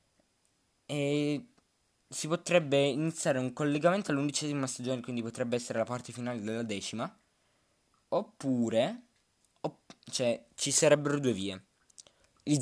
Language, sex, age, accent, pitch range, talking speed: Italian, male, 20-39, native, 110-145 Hz, 115 wpm